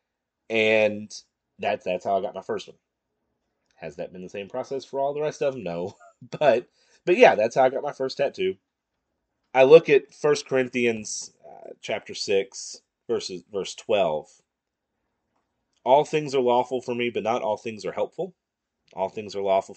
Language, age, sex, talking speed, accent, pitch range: English, 30-49, male, 180 wpm, American, 95-135 Hz